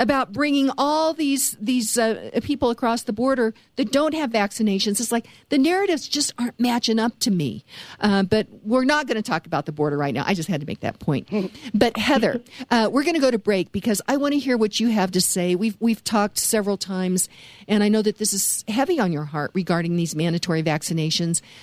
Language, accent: English, American